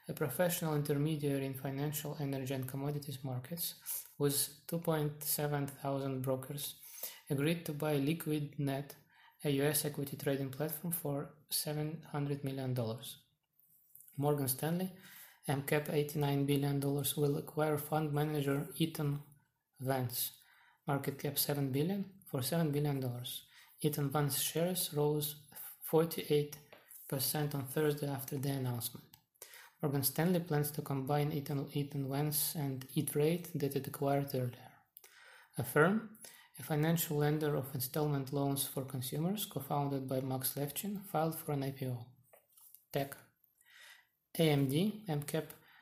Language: English